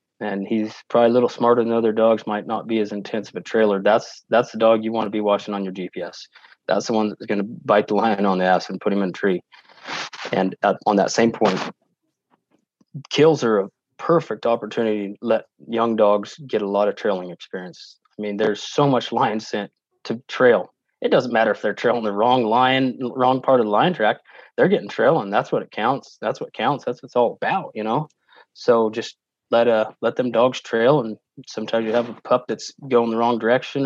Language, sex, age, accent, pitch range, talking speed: English, male, 20-39, American, 105-120 Hz, 225 wpm